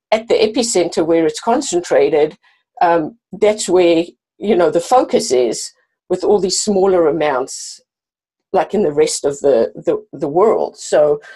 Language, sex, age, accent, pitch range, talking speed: English, female, 50-69, British, 175-235 Hz, 155 wpm